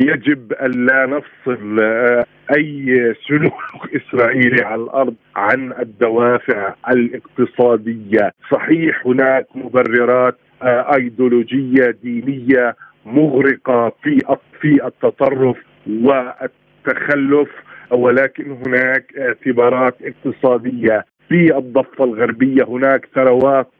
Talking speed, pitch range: 75 wpm, 125-135 Hz